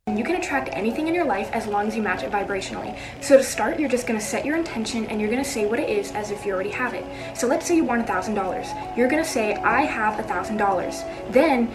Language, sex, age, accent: English, female, 20-39, American